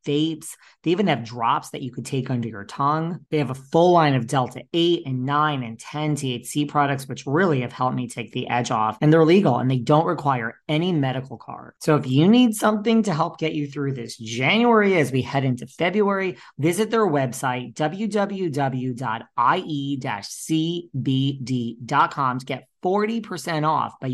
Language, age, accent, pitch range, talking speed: English, 20-39, American, 130-170 Hz, 175 wpm